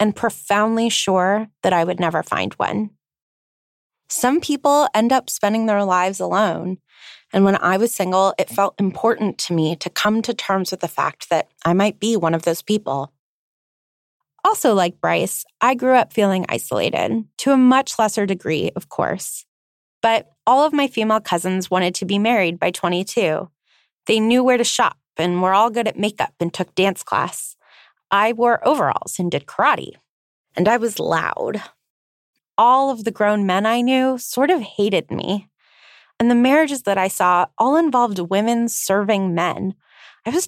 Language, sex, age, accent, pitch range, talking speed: English, female, 20-39, American, 180-235 Hz, 175 wpm